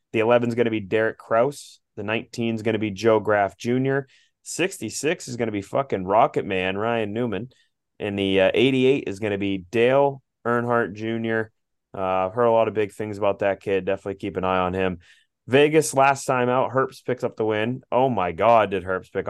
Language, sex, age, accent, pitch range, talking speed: English, male, 20-39, American, 95-115 Hz, 220 wpm